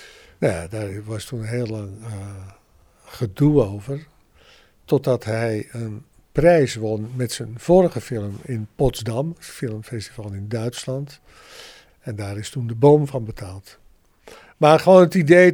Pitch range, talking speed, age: 110-145 Hz, 140 wpm, 60-79